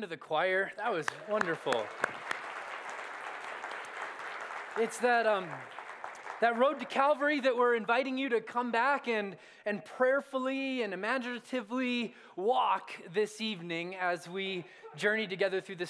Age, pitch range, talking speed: 20-39, 195-245 Hz, 130 wpm